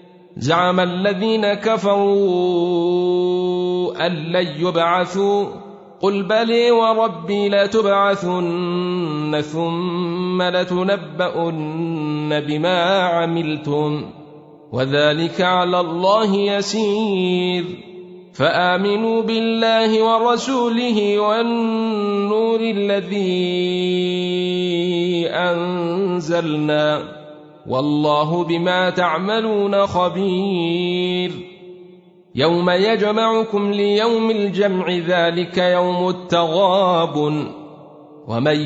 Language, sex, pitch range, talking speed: Arabic, male, 170-200 Hz, 55 wpm